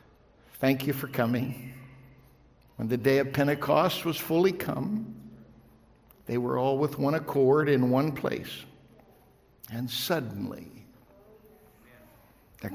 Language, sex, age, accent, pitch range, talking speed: English, male, 60-79, American, 120-150 Hz, 115 wpm